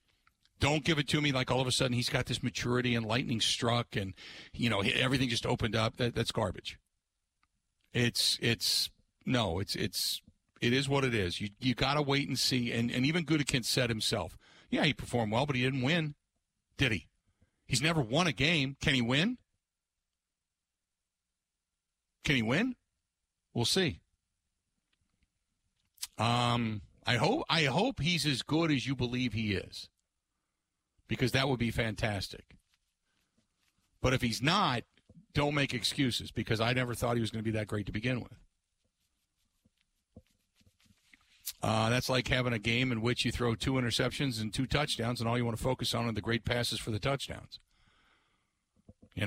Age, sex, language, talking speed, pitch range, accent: 50-69, male, English, 170 wpm, 110-145 Hz, American